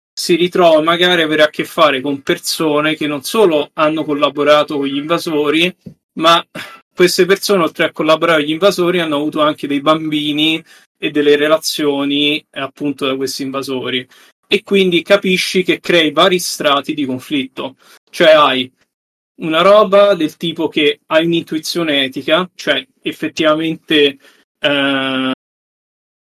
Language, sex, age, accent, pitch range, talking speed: Italian, male, 30-49, native, 145-170 Hz, 135 wpm